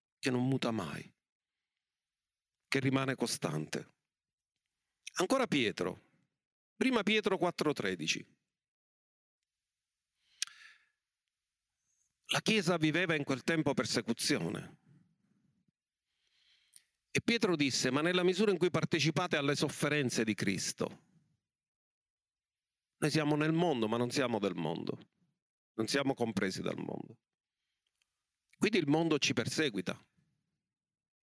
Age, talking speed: 40-59, 100 wpm